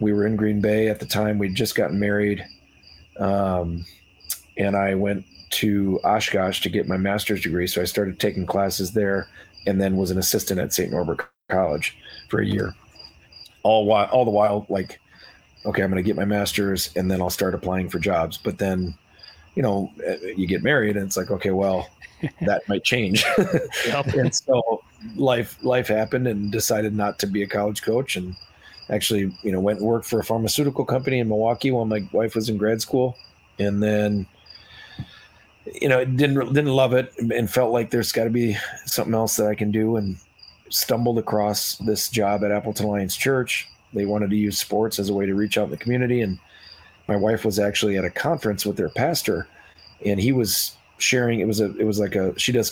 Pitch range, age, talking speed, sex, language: 95-110 Hz, 40-59, 200 wpm, male, English